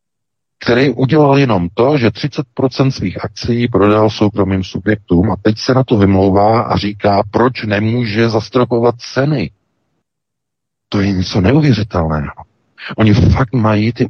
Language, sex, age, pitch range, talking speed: Czech, male, 50-69, 95-125 Hz, 130 wpm